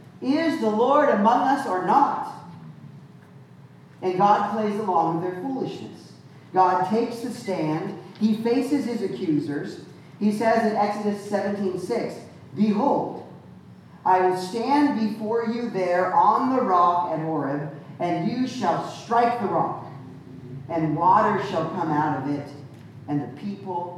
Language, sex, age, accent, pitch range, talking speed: English, male, 40-59, American, 155-215 Hz, 140 wpm